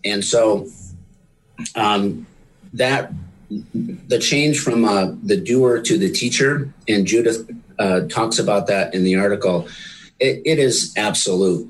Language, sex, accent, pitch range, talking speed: English, male, American, 95-125 Hz, 135 wpm